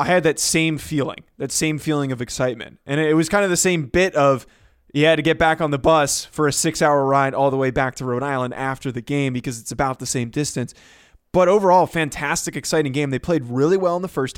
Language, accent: English, American